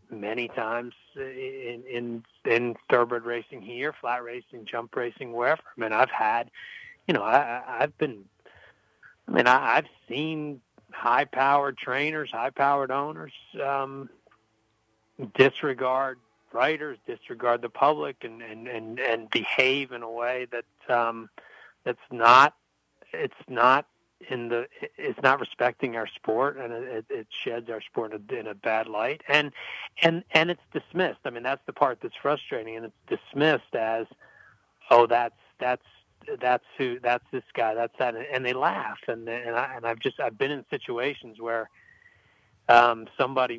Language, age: English, 60-79